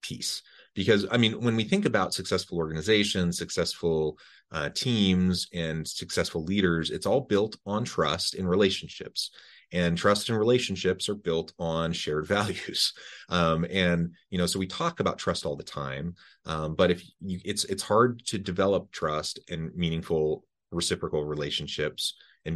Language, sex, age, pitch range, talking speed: English, male, 30-49, 80-100 Hz, 155 wpm